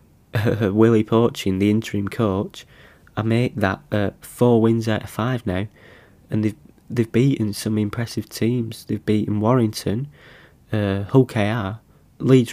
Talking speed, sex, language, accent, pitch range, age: 140 wpm, male, English, British, 105-120 Hz, 20-39